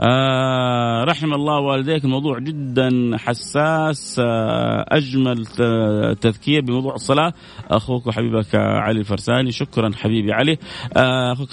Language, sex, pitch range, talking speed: Arabic, male, 115-135 Hz, 110 wpm